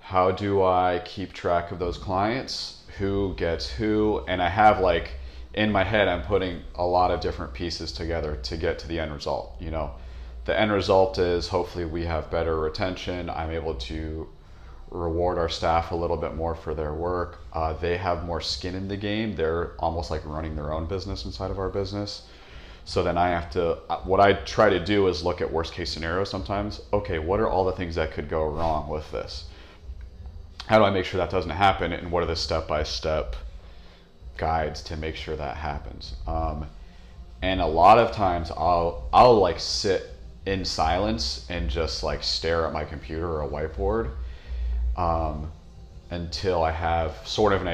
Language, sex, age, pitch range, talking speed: English, male, 30-49, 75-90 Hz, 190 wpm